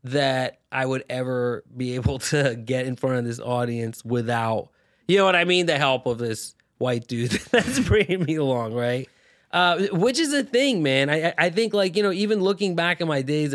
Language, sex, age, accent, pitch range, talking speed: English, male, 20-39, American, 130-170 Hz, 215 wpm